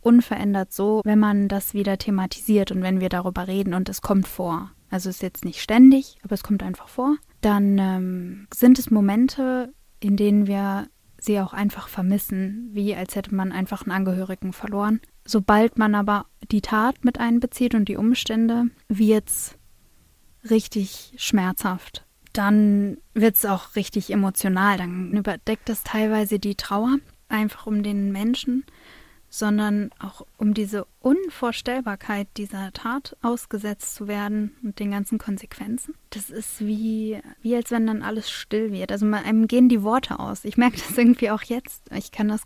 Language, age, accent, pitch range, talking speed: German, 20-39, German, 200-225 Hz, 165 wpm